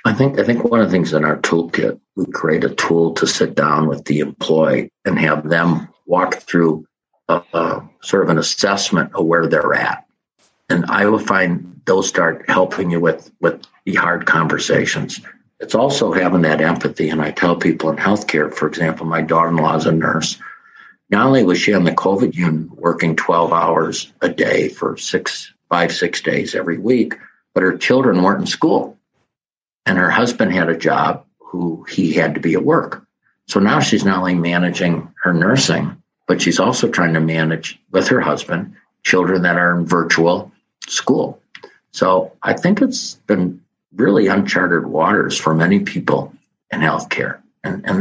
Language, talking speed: English, 180 wpm